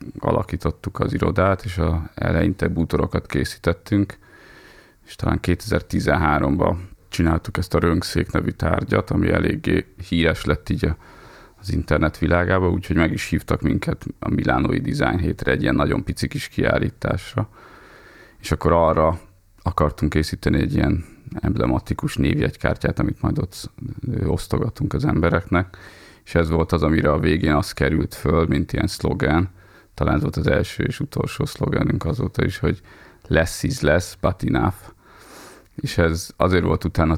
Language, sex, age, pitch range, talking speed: Hungarian, male, 30-49, 80-95 Hz, 140 wpm